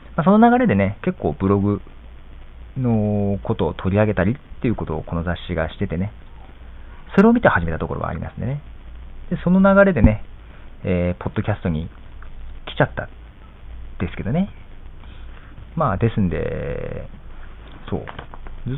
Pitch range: 85-120 Hz